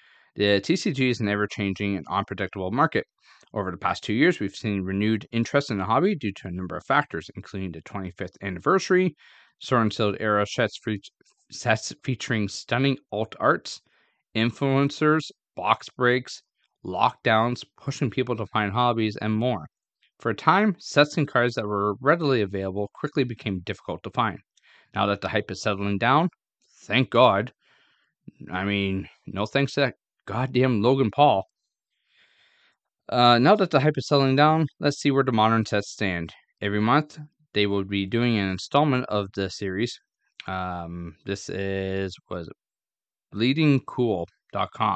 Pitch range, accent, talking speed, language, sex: 95-130 Hz, American, 150 wpm, English, male